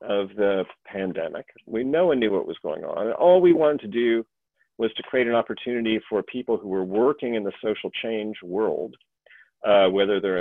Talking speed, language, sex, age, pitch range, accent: 195 wpm, English, male, 40-59, 105-125 Hz, American